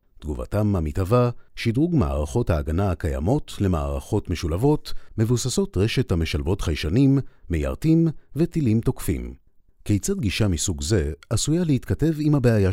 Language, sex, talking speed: Hebrew, male, 110 wpm